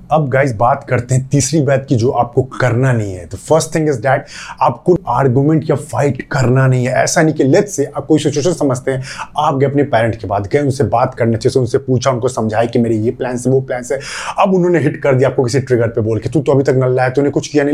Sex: male